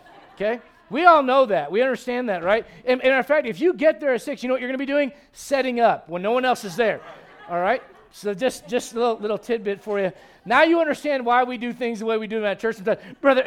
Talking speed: 270 wpm